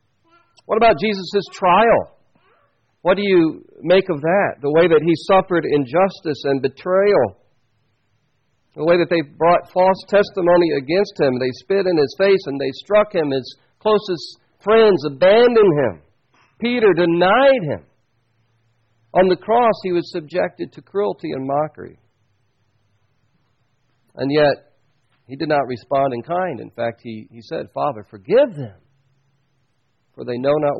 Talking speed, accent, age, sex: 145 wpm, American, 50-69, male